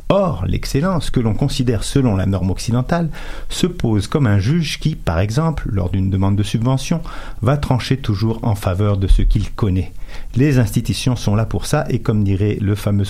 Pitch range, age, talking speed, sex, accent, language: 100-125 Hz, 50-69, 190 wpm, male, French, French